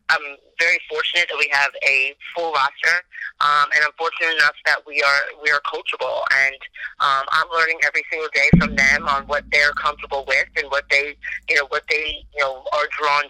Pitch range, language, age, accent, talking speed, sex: 140-155 Hz, English, 30-49, American, 205 wpm, female